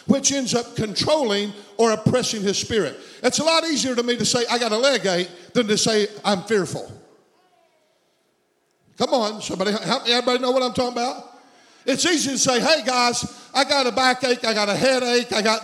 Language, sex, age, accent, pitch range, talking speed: English, male, 50-69, American, 215-275 Hz, 195 wpm